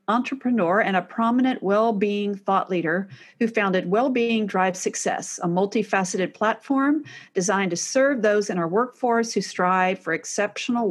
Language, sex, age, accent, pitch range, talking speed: English, female, 50-69, American, 185-245 Hz, 155 wpm